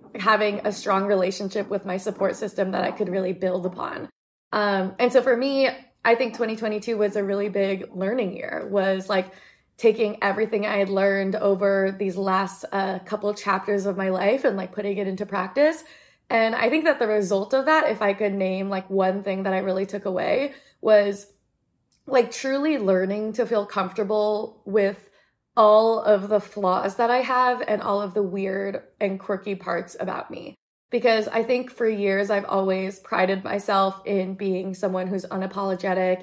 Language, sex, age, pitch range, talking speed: English, female, 20-39, 190-215 Hz, 180 wpm